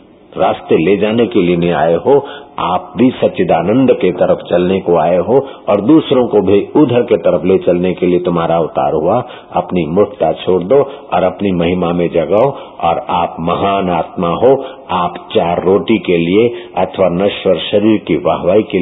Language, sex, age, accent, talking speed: Hindi, male, 60-79, native, 180 wpm